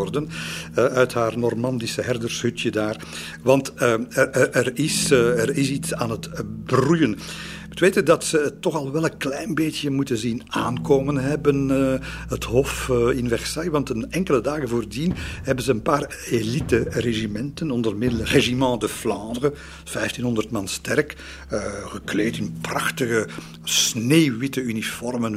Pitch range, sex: 110-145 Hz, male